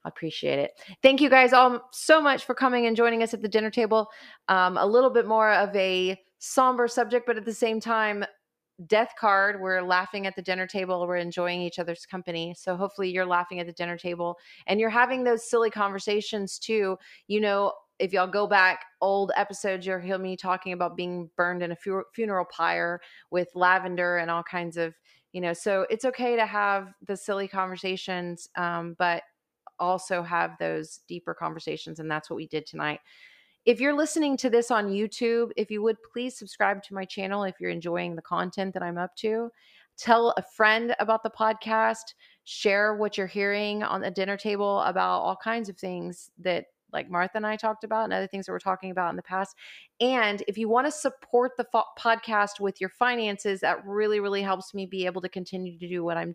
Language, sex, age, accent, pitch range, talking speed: English, female, 30-49, American, 180-225 Hz, 205 wpm